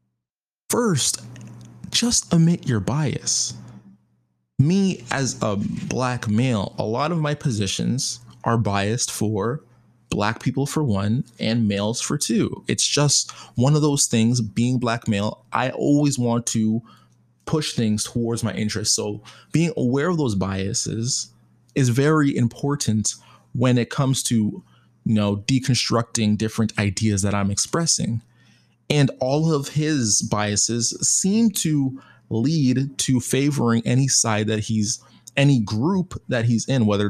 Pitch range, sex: 105-140 Hz, male